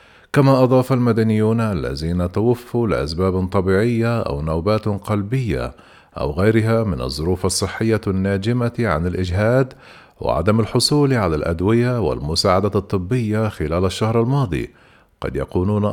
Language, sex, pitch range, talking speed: Arabic, male, 95-120 Hz, 110 wpm